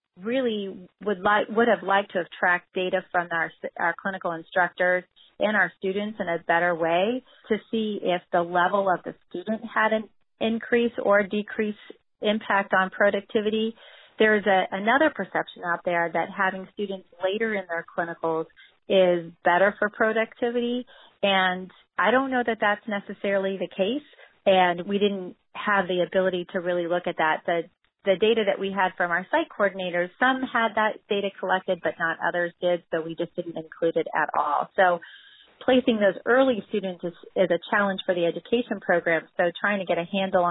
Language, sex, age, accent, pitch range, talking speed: English, female, 30-49, American, 175-210 Hz, 180 wpm